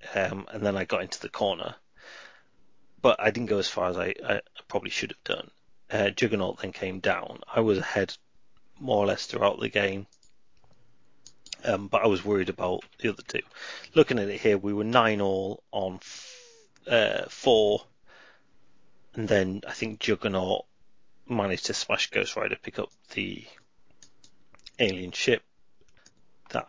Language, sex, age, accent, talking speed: English, male, 30-49, British, 155 wpm